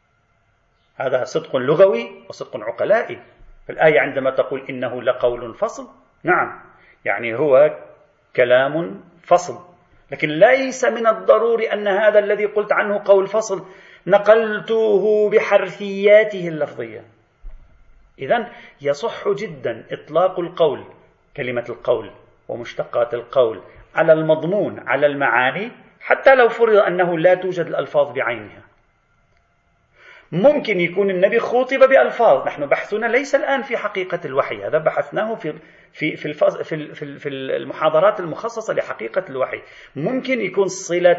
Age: 40-59